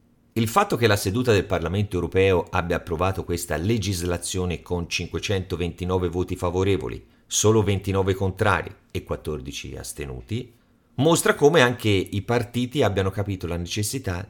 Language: Italian